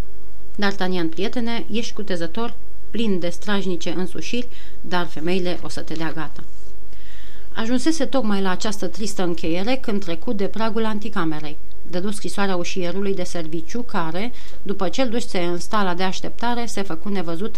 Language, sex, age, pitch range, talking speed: Romanian, female, 30-49, 175-225 Hz, 140 wpm